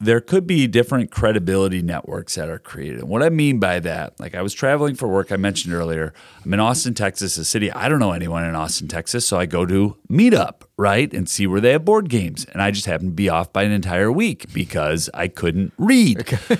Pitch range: 95-120 Hz